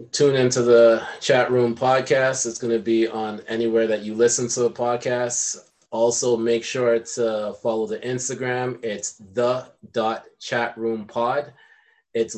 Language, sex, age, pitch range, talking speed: English, male, 20-39, 115-130 Hz, 135 wpm